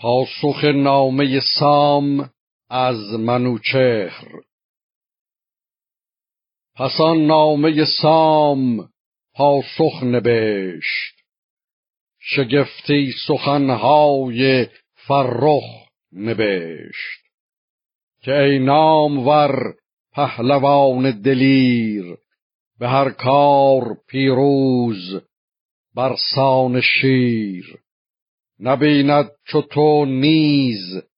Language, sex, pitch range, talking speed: Persian, male, 125-145 Hz, 60 wpm